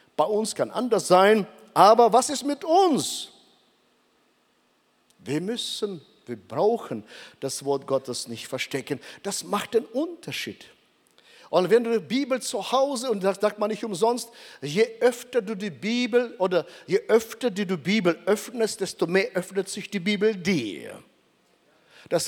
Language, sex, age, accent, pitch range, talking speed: German, male, 50-69, German, 165-225 Hz, 150 wpm